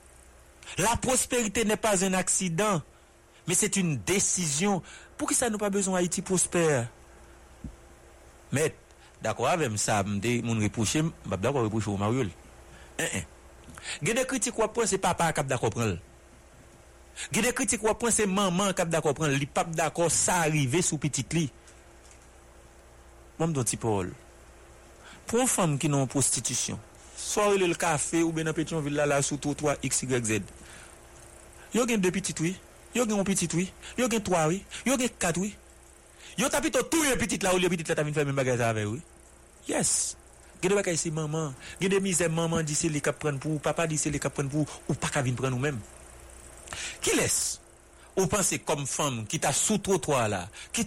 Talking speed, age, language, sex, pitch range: 165 wpm, 60-79, English, male, 115-190 Hz